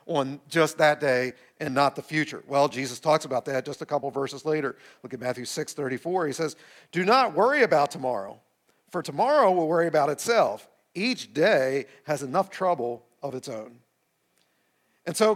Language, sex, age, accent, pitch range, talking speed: English, male, 50-69, American, 155-225 Hz, 180 wpm